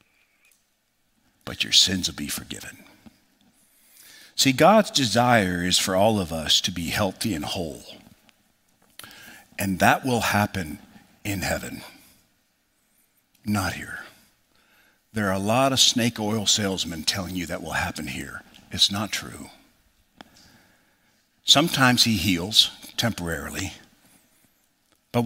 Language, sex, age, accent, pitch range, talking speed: English, male, 50-69, American, 95-125 Hz, 115 wpm